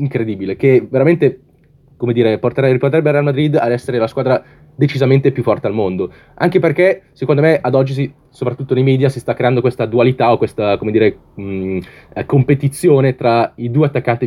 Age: 20-39